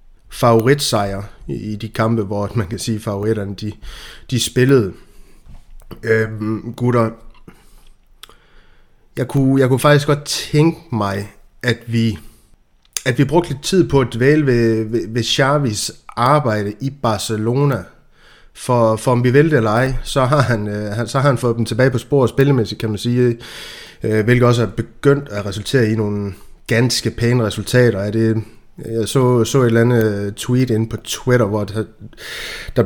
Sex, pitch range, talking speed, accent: male, 110-130 Hz, 150 wpm, native